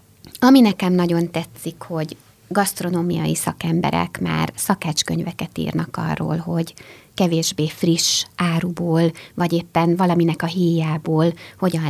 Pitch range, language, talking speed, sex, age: 160-180 Hz, Hungarian, 105 wpm, female, 30-49